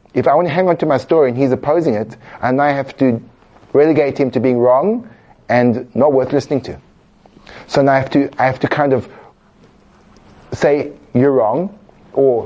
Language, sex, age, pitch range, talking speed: English, male, 30-49, 120-145 Hz, 195 wpm